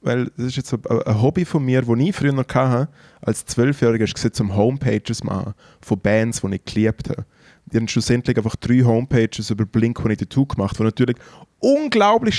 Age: 20-39